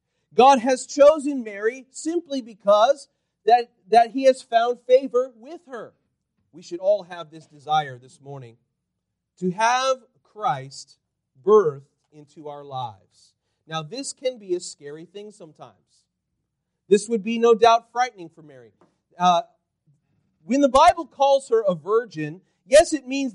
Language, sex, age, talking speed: English, male, 40-59, 145 wpm